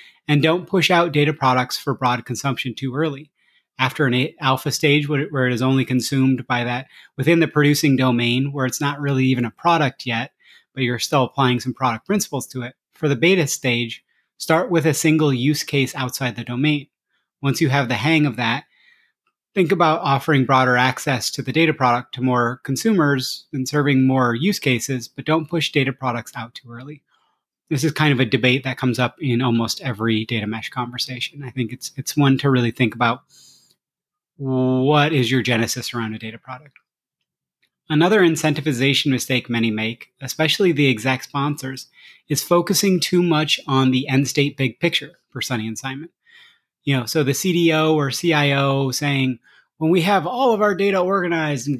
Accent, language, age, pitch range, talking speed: American, English, 30-49, 125-155 Hz, 185 wpm